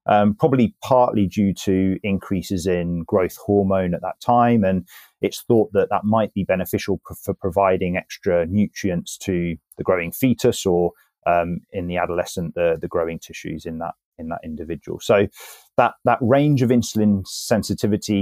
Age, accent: 30-49, British